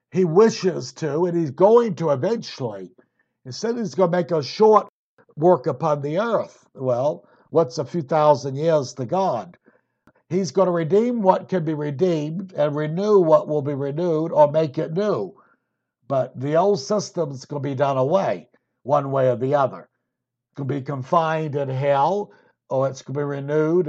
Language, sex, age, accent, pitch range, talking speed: English, male, 60-79, American, 140-185 Hz, 180 wpm